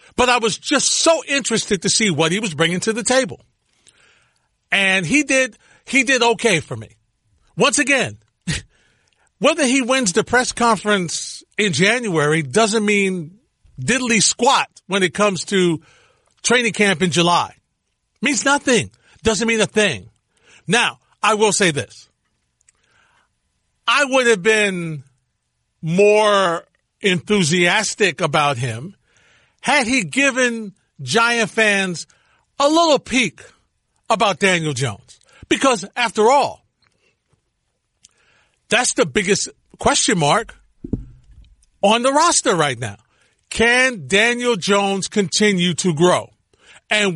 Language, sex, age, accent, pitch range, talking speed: English, male, 50-69, American, 170-235 Hz, 120 wpm